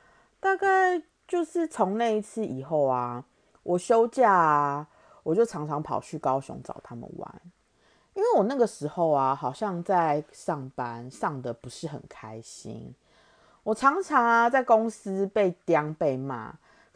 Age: 30-49